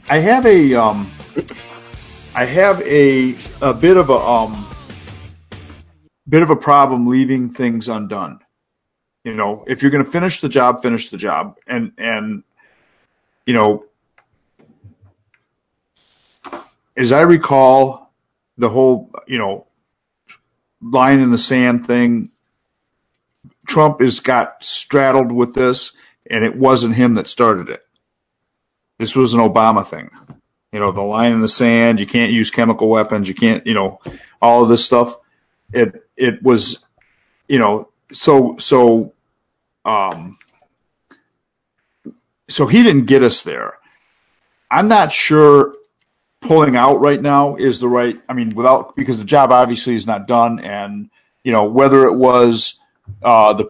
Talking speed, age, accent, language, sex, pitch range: 140 wpm, 50-69, American, English, male, 110-135 Hz